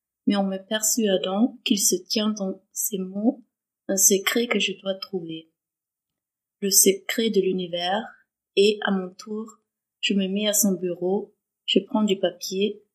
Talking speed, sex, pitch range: 160 wpm, female, 190-215 Hz